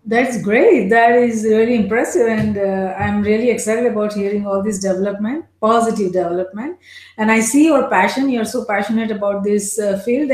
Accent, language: Indian, English